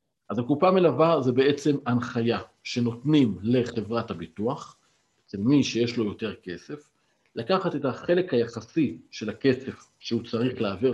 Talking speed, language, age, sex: 130 wpm, Hebrew, 50-69, male